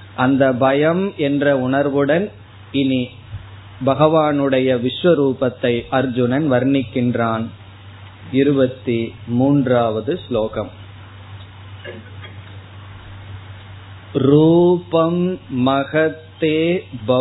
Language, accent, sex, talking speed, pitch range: Tamil, native, male, 50 wpm, 100-140 Hz